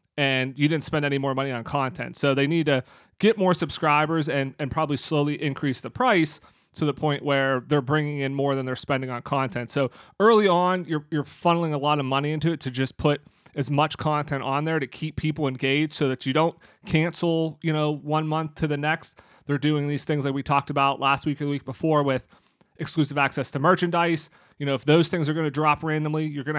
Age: 30-49